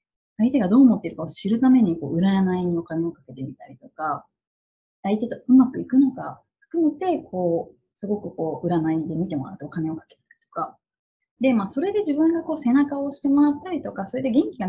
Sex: female